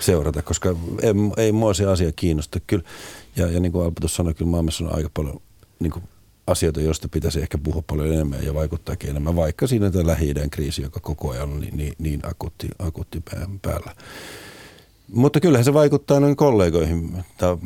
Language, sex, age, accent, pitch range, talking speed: Finnish, male, 50-69, native, 80-95 Hz, 180 wpm